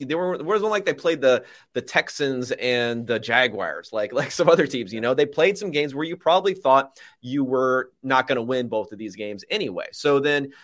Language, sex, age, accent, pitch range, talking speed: English, male, 30-49, American, 120-160 Hz, 225 wpm